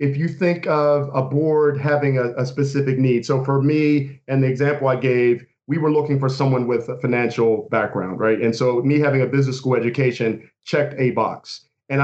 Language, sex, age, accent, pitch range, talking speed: English, male, 40-59, American, 120-140 Hz, 205 wpm